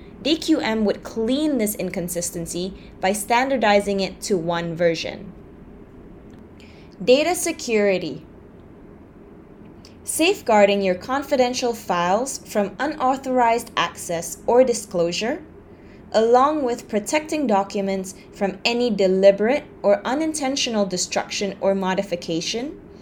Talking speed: 90 wpm